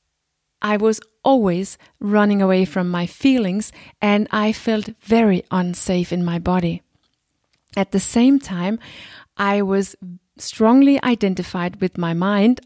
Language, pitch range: English, 185-220 Hz